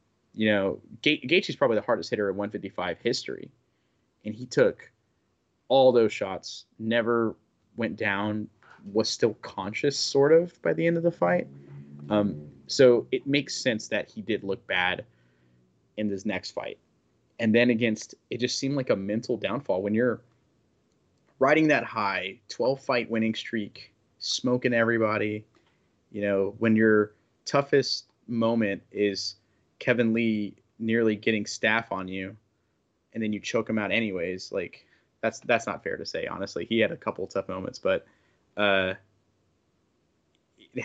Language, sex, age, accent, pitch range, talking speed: English, male, 20-39, American, 100-120 Hz, 150 wpm